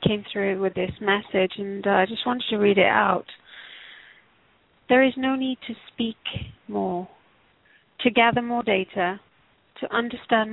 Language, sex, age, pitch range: English, female, 40-59, 200-240 Hz